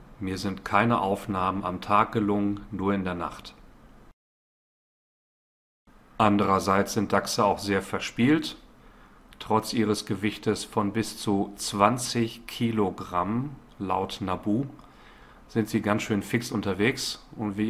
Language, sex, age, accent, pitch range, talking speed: German, male, 40-59, German, 95-105 Hz, 120 wpm